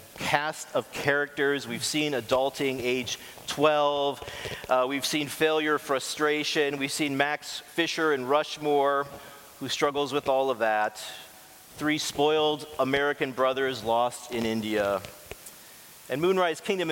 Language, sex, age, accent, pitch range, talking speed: English, male, 40-59, American, 130-155 Hz, 125 wpm